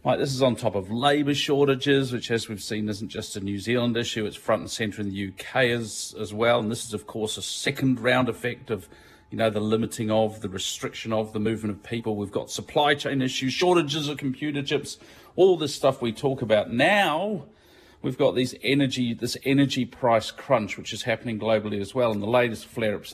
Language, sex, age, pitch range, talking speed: English, male, 40-59, 105-130 Hz, 220 wpm